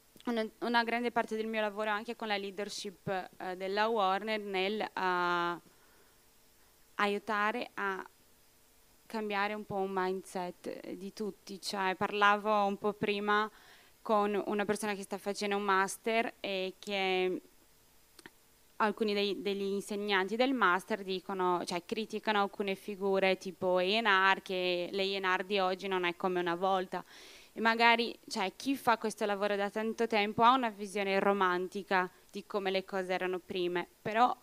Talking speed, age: 145 wpm, 20-39